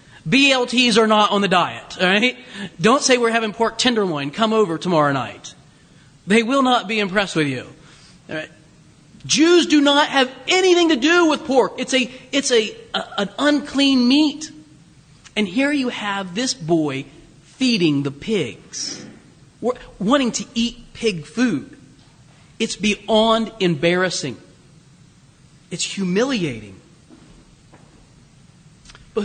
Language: English